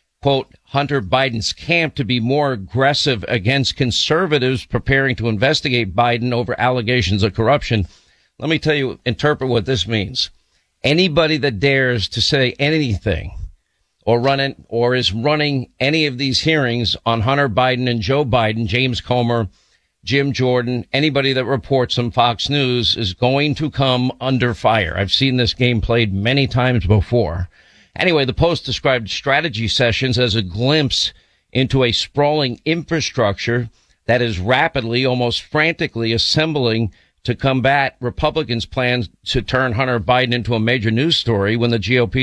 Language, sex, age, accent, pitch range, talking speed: English, male, 50-69, American, 115-135 Hz, 150 wpm